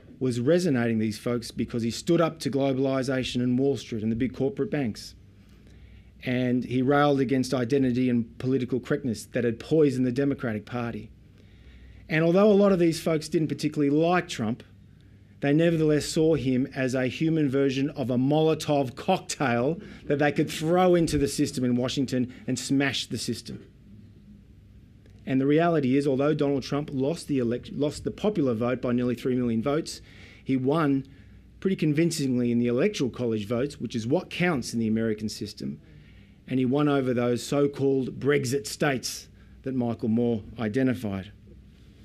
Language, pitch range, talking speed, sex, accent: English, 115-145 Hz, 165 wpm, male, Australian